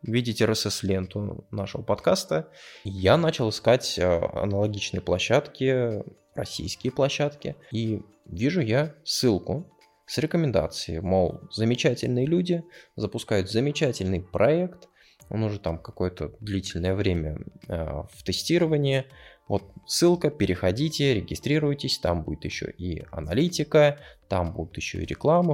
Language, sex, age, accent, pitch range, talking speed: Russian, male, 20-39, native, 95-135 Hz, 105 wpm